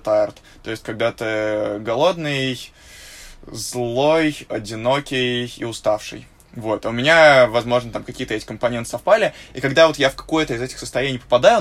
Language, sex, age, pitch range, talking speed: Russian, male, 20-39, 115-135 Hz, 155 wpm